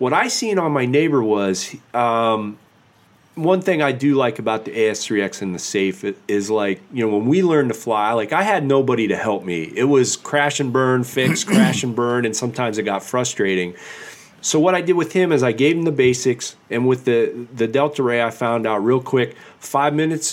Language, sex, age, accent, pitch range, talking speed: English, male, 40-59, American, 115-150 Hz, 220 wpm